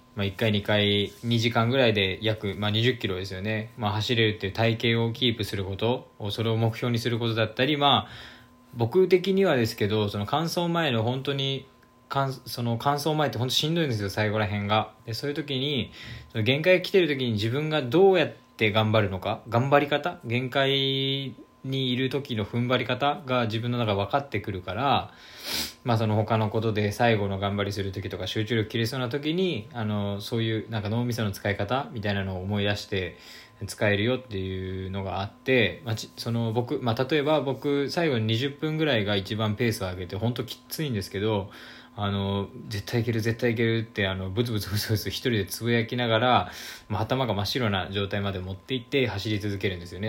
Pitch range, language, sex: 100-130 Hz, Japanese, male